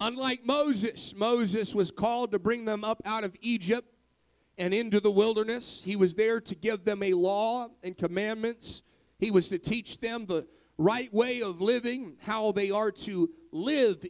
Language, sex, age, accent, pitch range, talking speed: English, male, 40-59, American, 200-240 Hz, 175 wpm